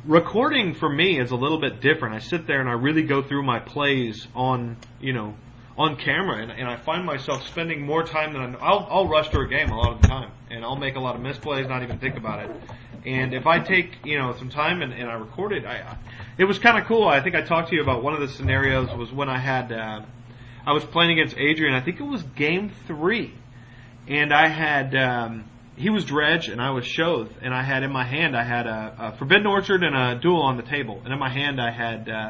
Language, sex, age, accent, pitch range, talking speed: English, male, 40-59, American, 120-155 Hz, 260 wpm